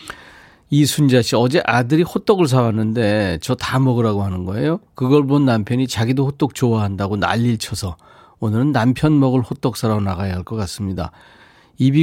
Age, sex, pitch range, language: 40-59, male, 105-145 Hz, Korean